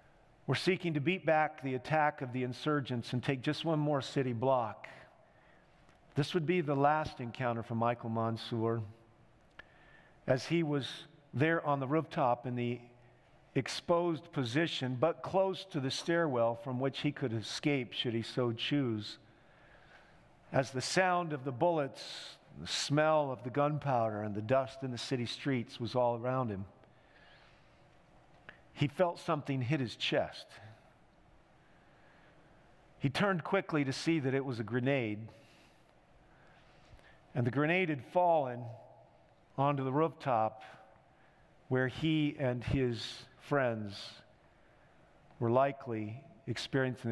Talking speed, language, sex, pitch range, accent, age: 135 wpm, English, male, 120-150 Hz, American, 50-69